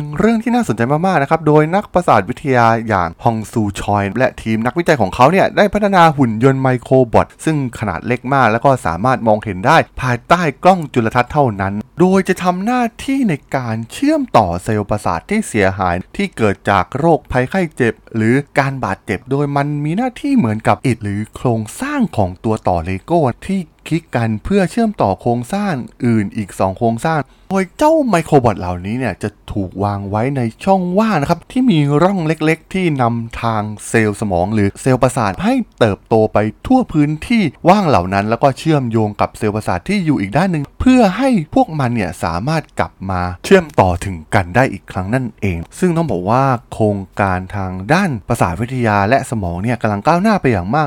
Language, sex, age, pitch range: Thai, male, 20-39, 105-165 Hz